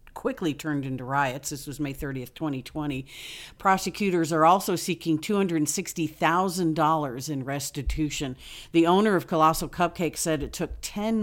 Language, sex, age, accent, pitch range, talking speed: English, female, 50-69, American, 150-180 Hz, 135 wpm